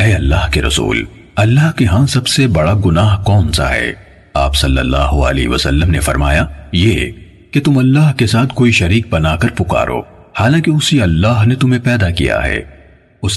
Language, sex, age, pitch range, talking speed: Urdu, male, 40-59, 80-120 Hz, 175 wpm